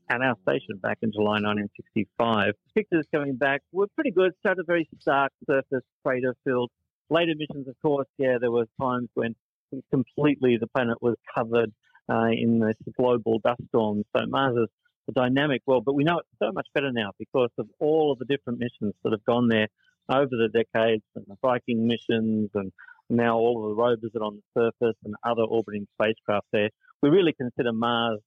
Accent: Australian